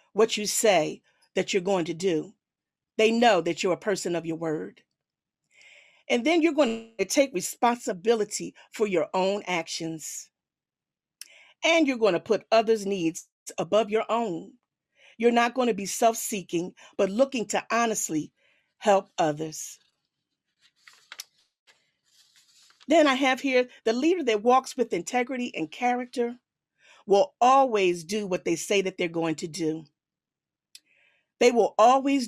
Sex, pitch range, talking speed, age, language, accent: female, 180-235 Hz, 140 wpm, 40-59, English, American